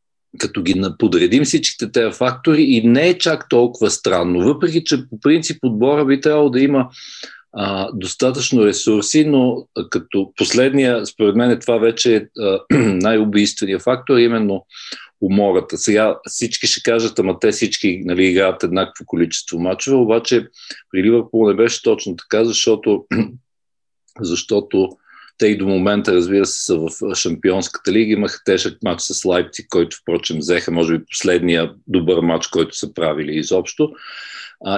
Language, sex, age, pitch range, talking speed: Bulgarian, male, 50-69, 95-125 Hz, 150 wpm